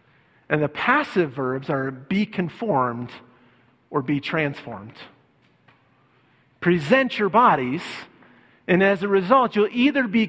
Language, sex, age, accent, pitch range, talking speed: English, male, 40-59, American, 170-215 Hz, 115 wpm